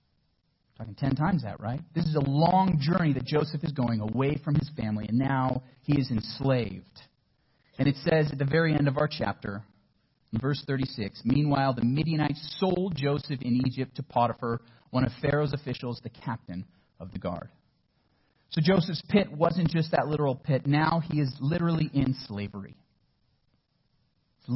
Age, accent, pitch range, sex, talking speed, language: 40-59, American, 125-160 Hz, male, 170 wpm, English